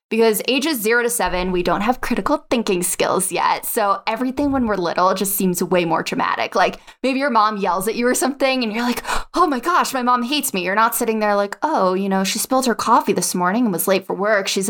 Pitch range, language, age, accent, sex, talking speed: 195-255 Hz, English, 20-39, American, female, 250 wpm